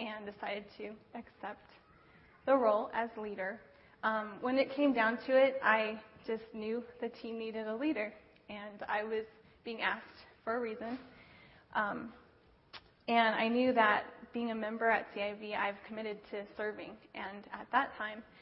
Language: English